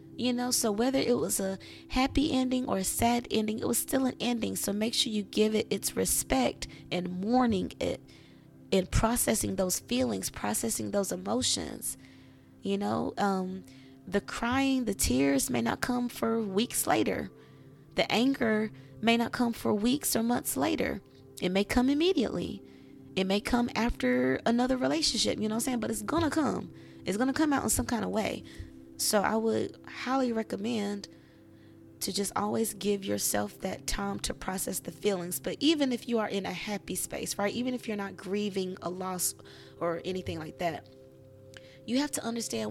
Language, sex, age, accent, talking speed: English, female, 20-39, American, 185 wpm